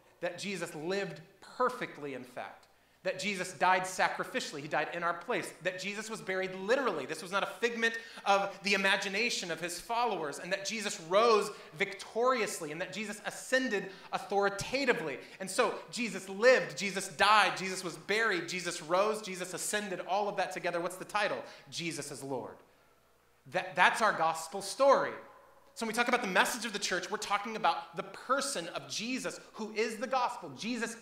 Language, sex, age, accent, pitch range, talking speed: English, male, 30-49, American, 145-205 Hz, 175 wpm